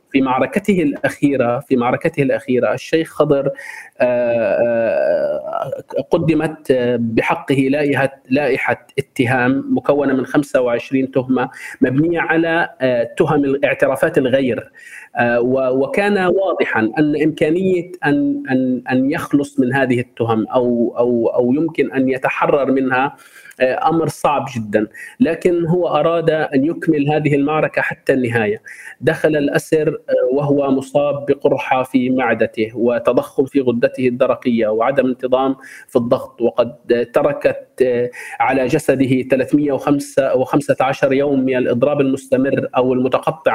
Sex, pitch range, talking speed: male, 130-160 Hz, 105 wpm